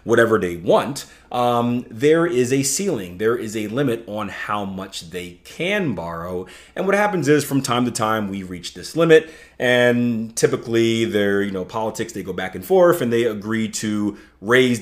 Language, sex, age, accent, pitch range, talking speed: English, male, 30-49, American, 95-125 Hz, 180 wpm